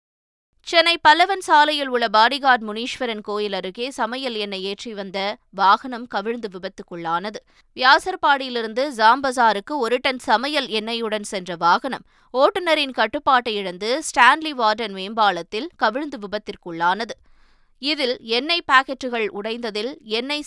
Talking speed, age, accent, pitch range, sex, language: 105 wpm, 20-39, native, 205-265 Hz, female, Tamil